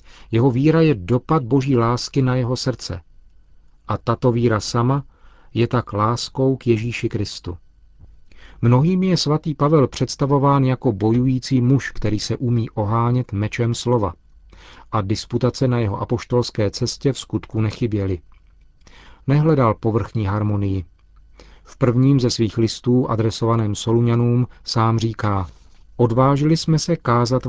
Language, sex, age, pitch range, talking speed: Czech, male, 40-59, 100-130 Hz, 125 wpm